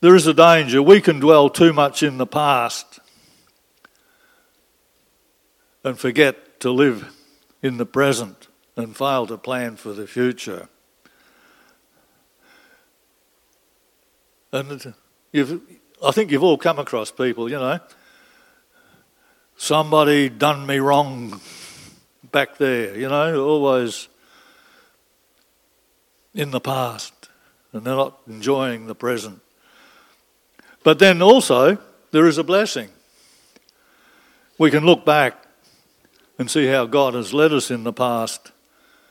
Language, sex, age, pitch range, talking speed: English, male, 60-79, 125-150 Hz, 115 wpm